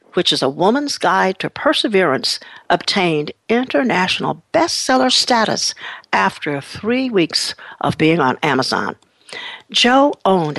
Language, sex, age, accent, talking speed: English, female, 60-79, American, 115 wpm